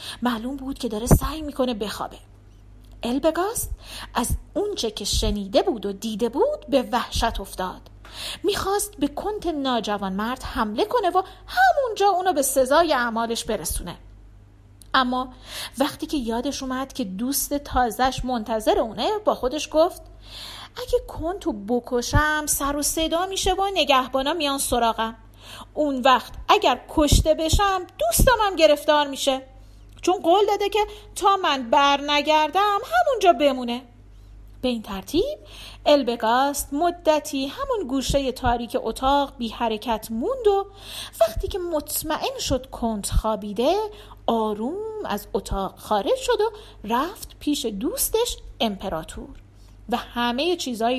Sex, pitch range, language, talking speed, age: female, 230-345 Hz, Persian, 125 wpm, 40-59